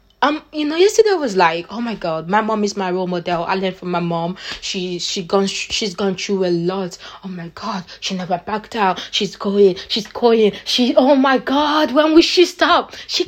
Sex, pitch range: female, 195-270 Hz